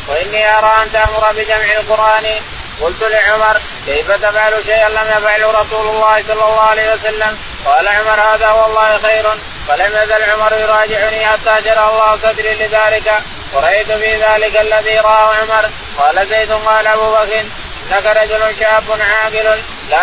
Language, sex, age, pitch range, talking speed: Arabic, male, 20-39, 215-220 Hz, 145 wpm